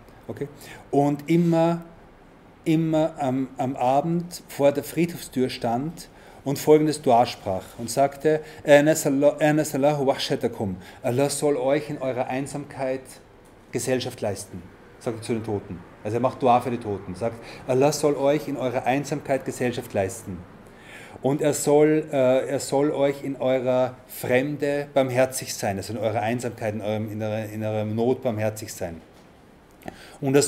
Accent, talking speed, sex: German, 145 wpm, male